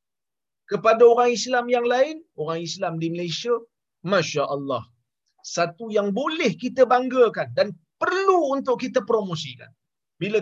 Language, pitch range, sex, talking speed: Malayalam, 140-195 Hz, male, 120 wpm